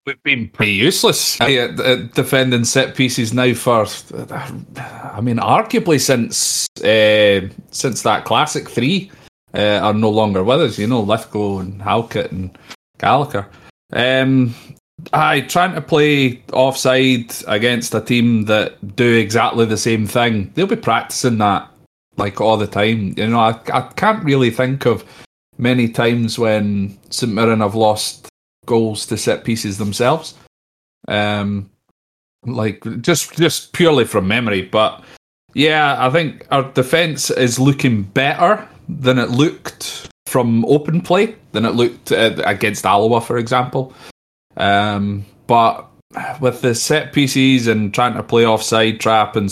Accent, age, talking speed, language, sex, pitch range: British, 30-49, 145 wpm, English, male, 105-130 Hz